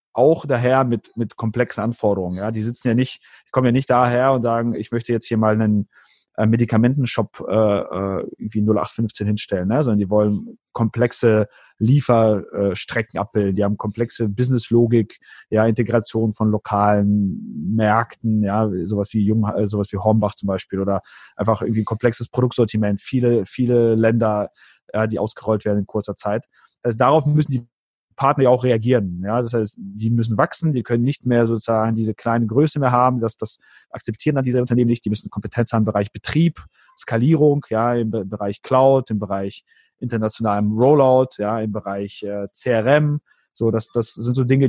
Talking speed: 175 wpm